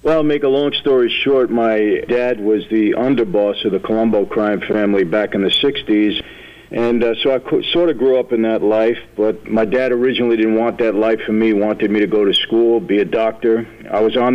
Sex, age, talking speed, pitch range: male, 50-69, 235 wpm, 105-120 Hz